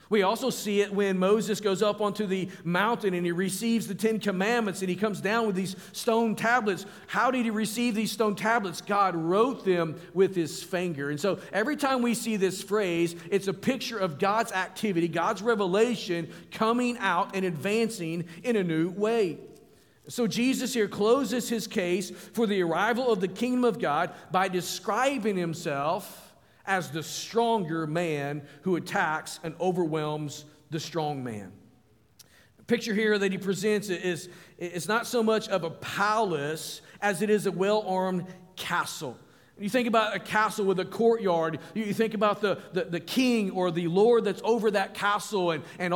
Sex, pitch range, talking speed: male, 175-220 Hz, 175 wpm